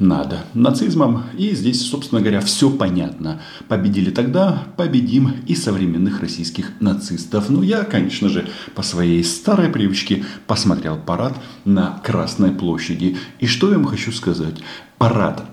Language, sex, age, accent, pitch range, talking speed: Russian, male, 40-59, native, 85-105 Hz, 135 wpm